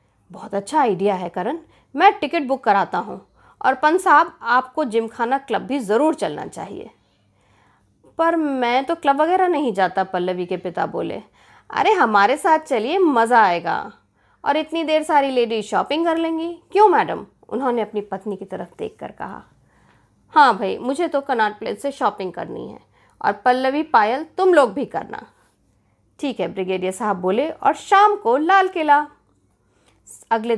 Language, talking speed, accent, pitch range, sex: Hindi, 160 wpm, native, 195-300 Hz, female